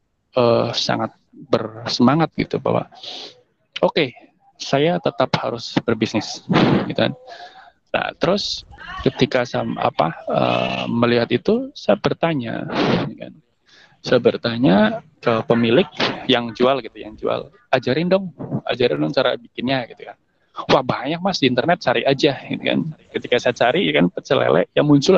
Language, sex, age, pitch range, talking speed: Indonesian, male, 20-39, 120-160 Hz, 140 wpm